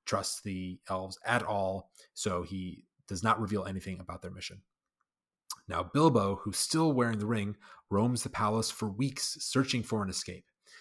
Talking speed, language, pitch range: 165 wpm, English, 95-115 Hz